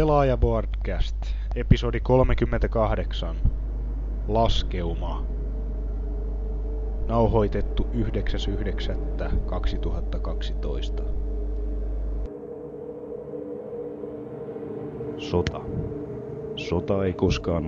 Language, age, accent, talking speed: Finnish, 30-49, native, 35 wpm